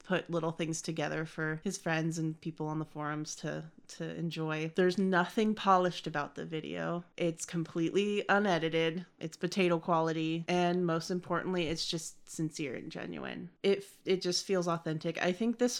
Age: 30-49